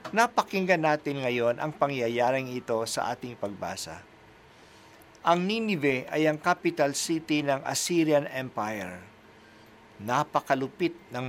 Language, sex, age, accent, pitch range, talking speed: Filipino, male, 50-69, native, 130-180 Hz, 105 wpm